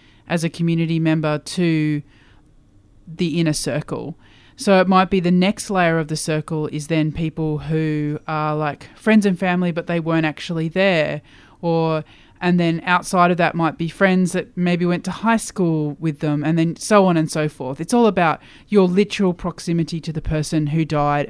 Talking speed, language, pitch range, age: 190 wpm, English, 150-180 Hz, 20-39